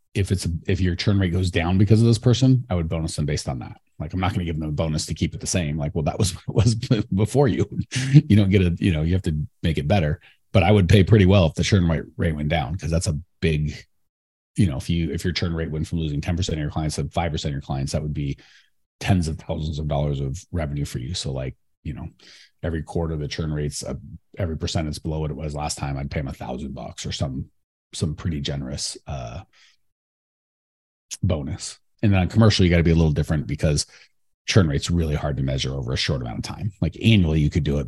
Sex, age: male, 30-49